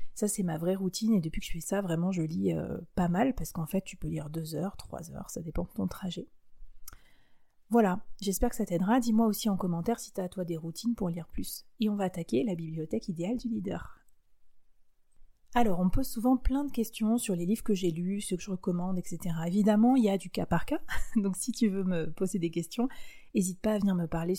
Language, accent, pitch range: French, French, 175-215 Hz